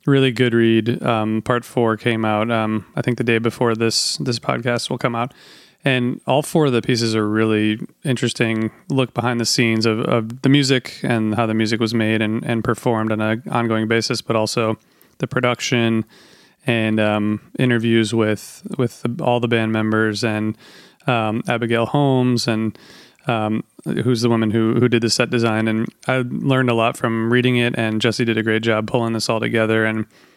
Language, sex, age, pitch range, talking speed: English, male, 30-49, 110-125 Hz, 190 wpm